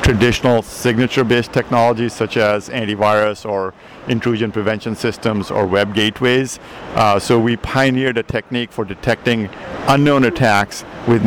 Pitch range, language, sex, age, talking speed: 110-125 Hz, English, male, 50-69, 135 wpm